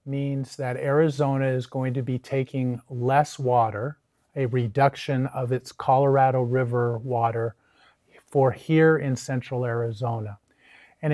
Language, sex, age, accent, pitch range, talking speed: English, male, 40-59, American, 130-150 Hz, 125 wpm